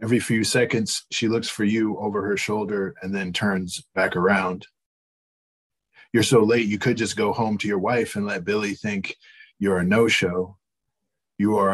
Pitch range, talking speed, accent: 95-115 Hz, 180 wpm, American